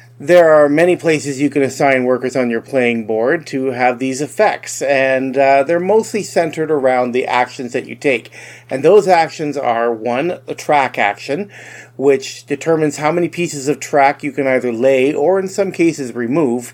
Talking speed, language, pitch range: 185 wpm, English, 120-155 Hz